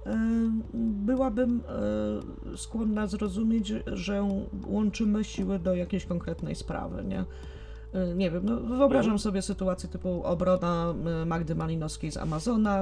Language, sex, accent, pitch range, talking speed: Polish, female, native, 145-195 Hz, 110 wpm